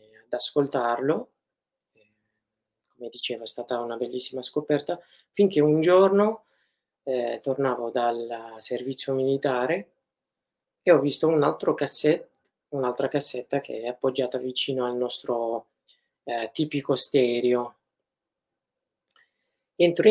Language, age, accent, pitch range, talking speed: Italian, 20-39, native, 120-150 Hz, 105 wpm